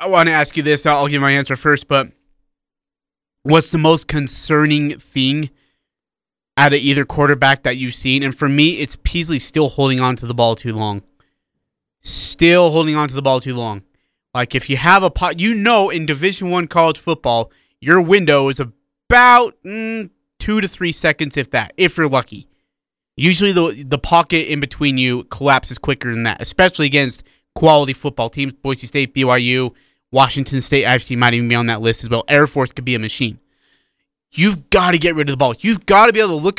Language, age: English, 20-39